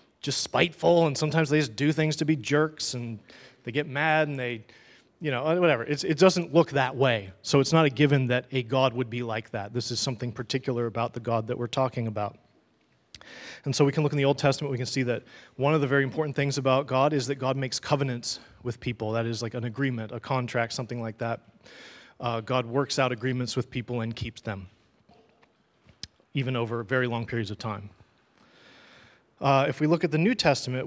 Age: 30-49